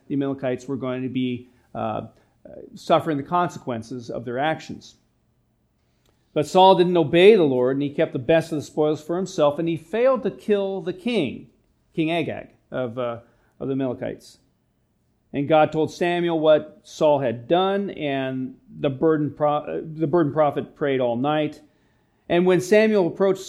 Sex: male